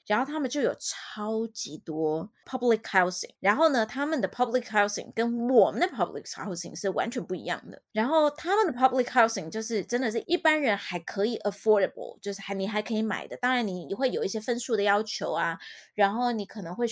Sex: female